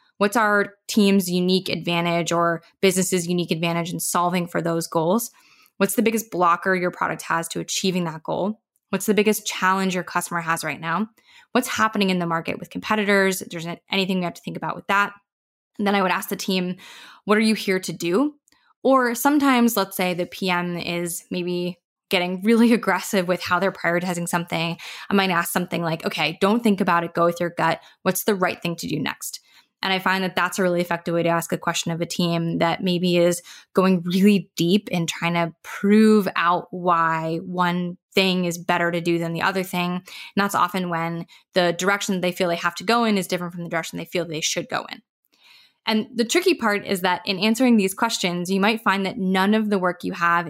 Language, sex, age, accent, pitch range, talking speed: English, female, 20-39, American, 170-205 Hz, 215 wpm